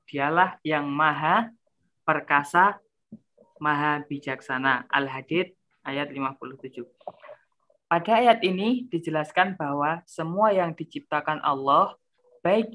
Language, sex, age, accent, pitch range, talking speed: Indonesian, female, 20-39, native, 145-185 Hz, 90 wpm